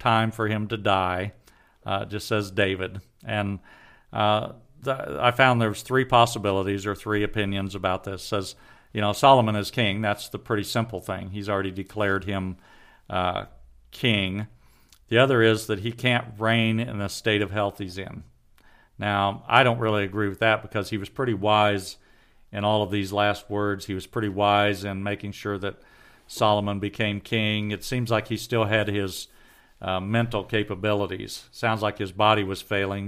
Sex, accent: male, American